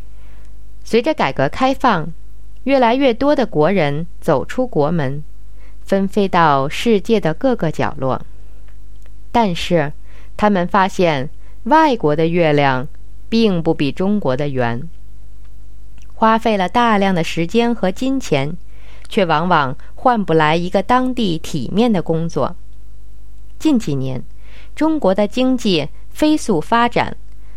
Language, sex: English, female